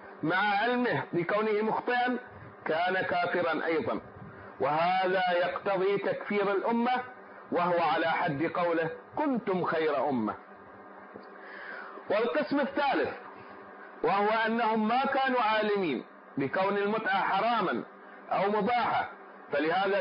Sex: male